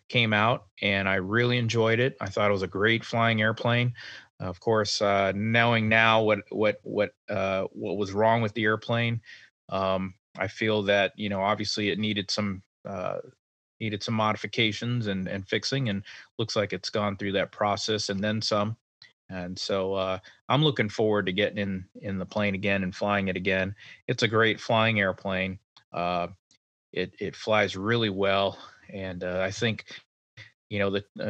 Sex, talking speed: male, 180 wpm